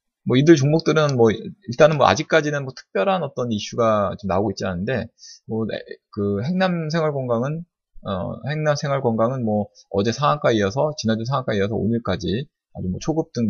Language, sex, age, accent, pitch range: Korean, male, 20-39, native, 100-140 Hz